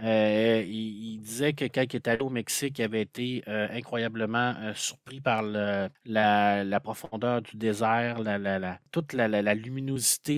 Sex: male